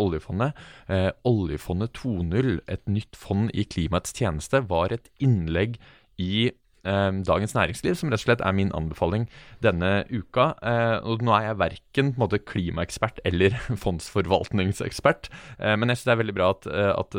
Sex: male